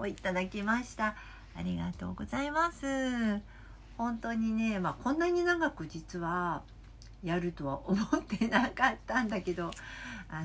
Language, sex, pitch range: Japanese, female, 150-230 Hz